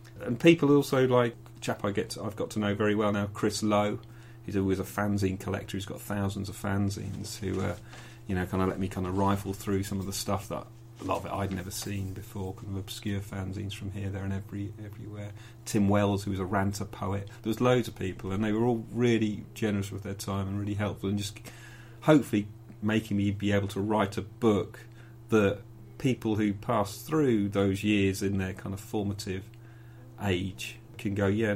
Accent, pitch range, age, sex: British, 95-115 Hz, 40-59, male